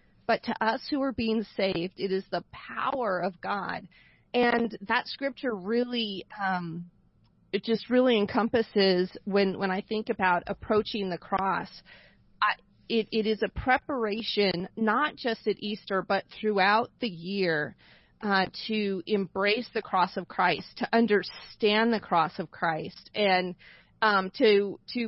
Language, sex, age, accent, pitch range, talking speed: English, female, 30-49, American, 195-235 Hz, 145 wpm